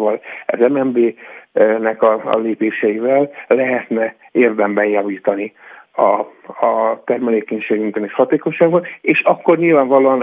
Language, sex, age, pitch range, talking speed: Hungarian, male, 60-79, 105-130 Hz, 90 wpm